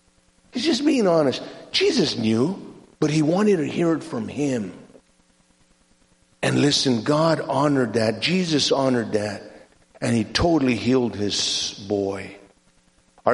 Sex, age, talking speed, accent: male, 50-69, 130 wpm, American